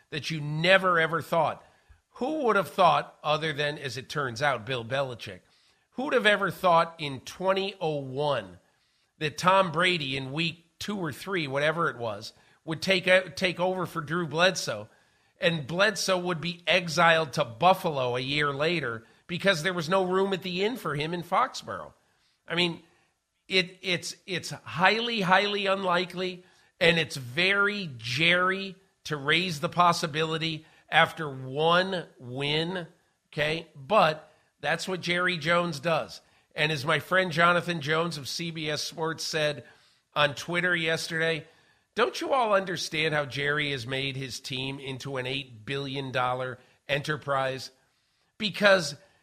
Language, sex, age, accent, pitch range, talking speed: English, male, 50-69, American, 145-180 Hz, 145 wpm